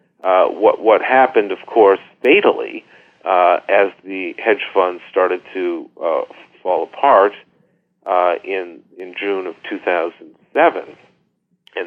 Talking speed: 120 wpm